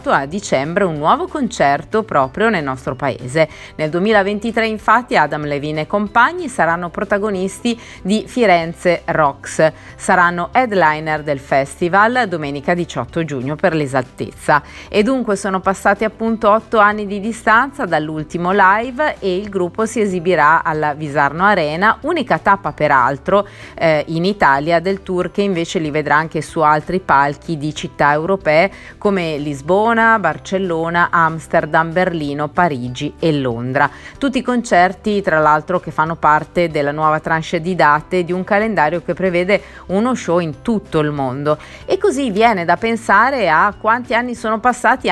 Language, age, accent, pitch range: Italian, 30-49, native, 155-210 Hz